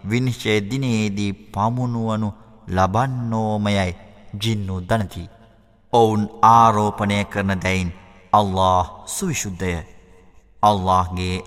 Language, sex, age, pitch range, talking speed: Arabic, male, 30-49, 90-110 Hz, 95 wpm